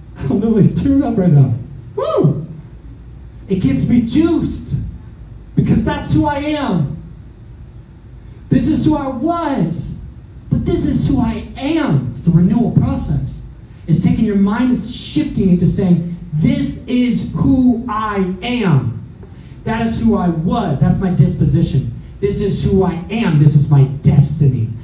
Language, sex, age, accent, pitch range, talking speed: English, male, 30-49, American, 145-205 Hz, 145 wpm